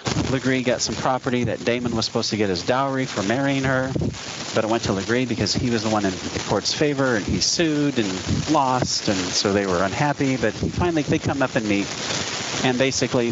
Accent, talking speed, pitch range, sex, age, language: American, 215 wpm, 100-130 Hz, male, 40-59, English